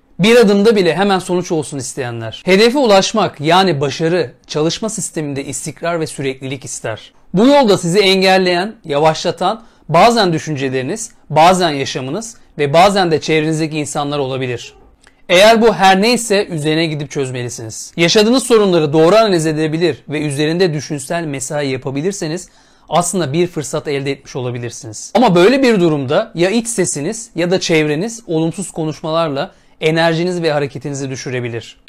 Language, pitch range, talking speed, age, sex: Turkish, 140-185 Hz, 135 wpm, 40-59, male